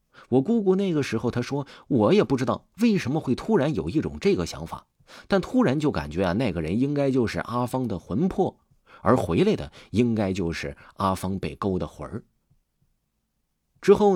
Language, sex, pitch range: Chinese, male, 85-130 Hz